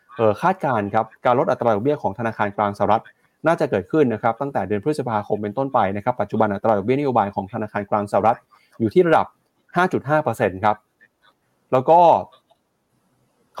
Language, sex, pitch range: Thai, male, 105-140 Hz